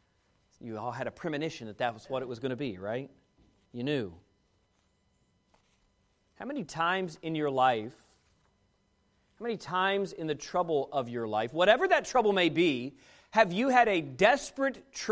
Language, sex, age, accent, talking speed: English, male, 40-59, American, 165 wpm